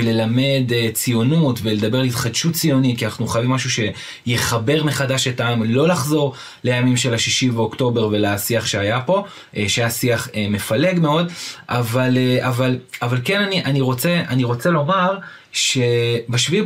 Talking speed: 150 wpm